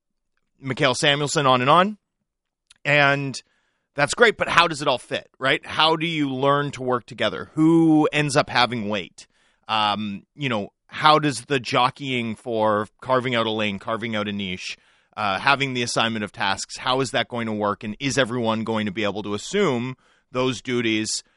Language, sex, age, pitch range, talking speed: English, male, 30-49, 115-140 Hz, 185 wpm